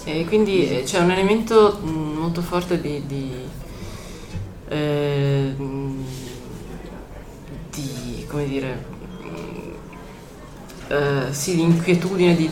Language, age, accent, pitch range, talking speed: Italian, 30-49, native, 135-160 Hz, 50 wpm